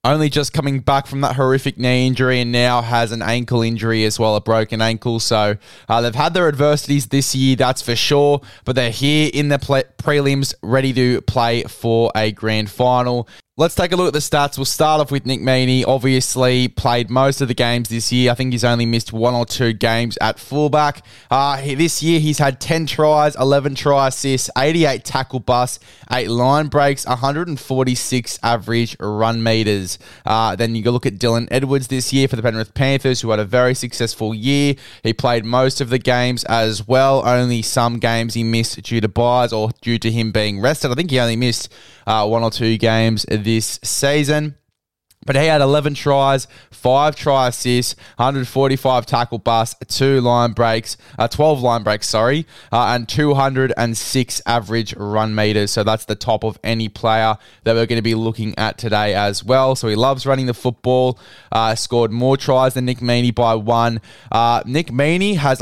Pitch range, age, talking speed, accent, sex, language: 115-135 Hz, 10-29, 195 wpm, Australian, male, English